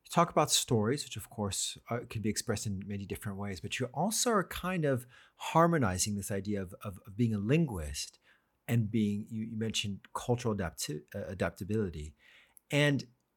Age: 40-59